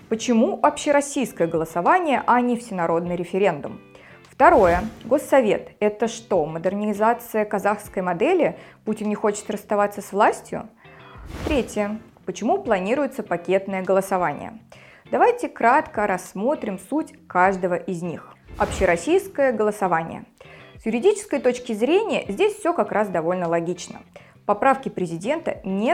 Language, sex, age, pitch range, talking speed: Russian, female, 20-39, 185-270 Hz, 110 wpm